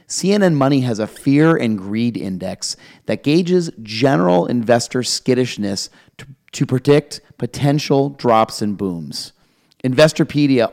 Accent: American